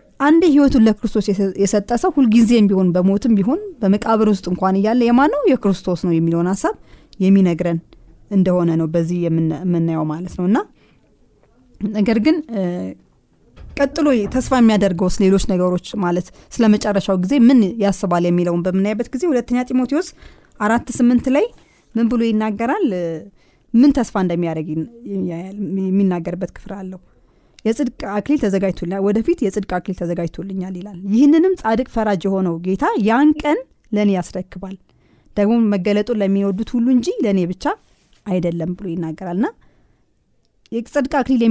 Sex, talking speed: female, 105 wpm